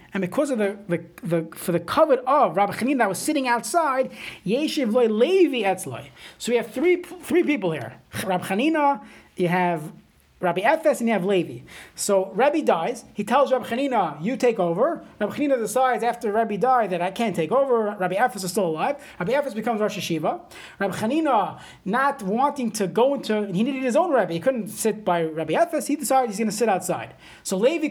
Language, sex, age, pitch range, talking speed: English, male, 30-49, 200-270 Hz, 200 wpm